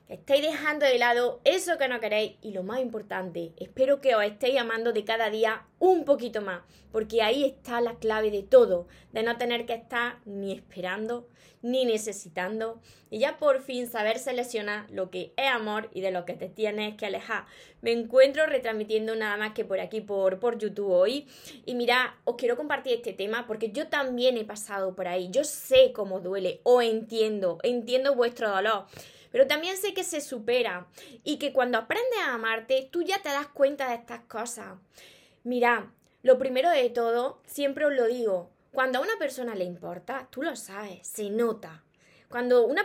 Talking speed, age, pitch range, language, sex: 190 wpm, 20-39, 215-270 Hz, Spanish, female